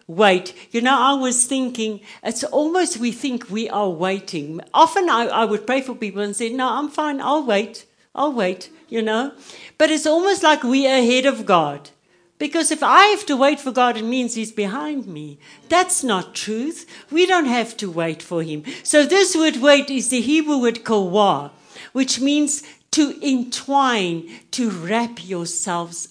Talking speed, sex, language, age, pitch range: 180 wpm, female, English, 60-79, 185-280 Hz